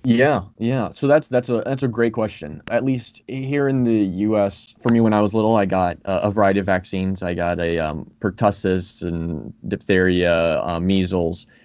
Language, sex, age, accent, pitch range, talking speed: English, male, 20-39, American, 95-115 Hz, 190 wpm